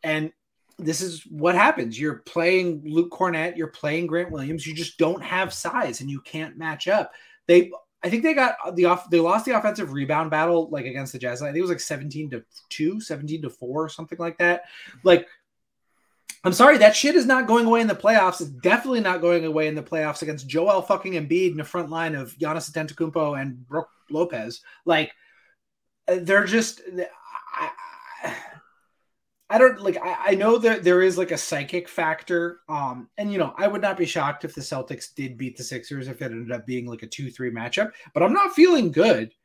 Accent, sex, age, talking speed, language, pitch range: American, male, 20-39, 210 wpm, English, 145-185 Hz